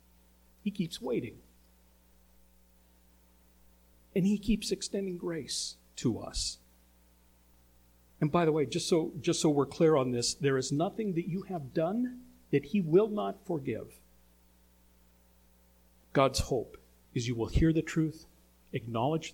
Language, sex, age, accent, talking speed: English, male, 50-69, American, 135 wpm